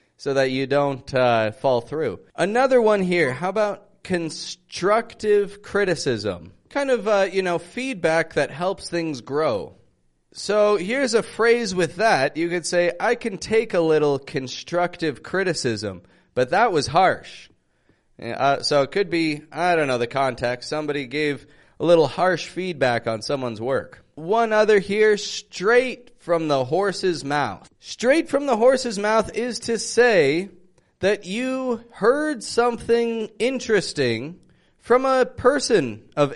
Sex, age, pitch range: male, 20-39, 145-210 Hz